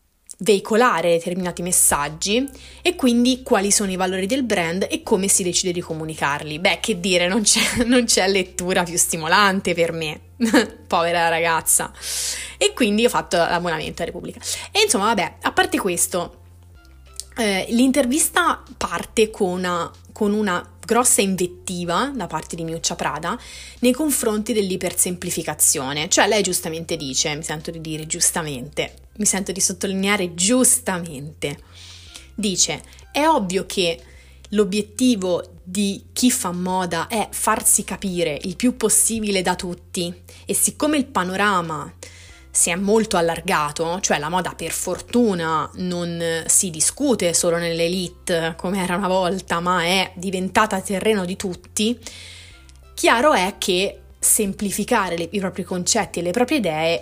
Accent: native